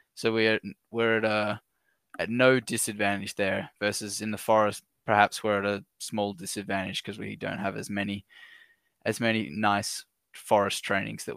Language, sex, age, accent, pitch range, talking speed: English, male, 10-29, Australian, 105-120 Hz, 170 wpm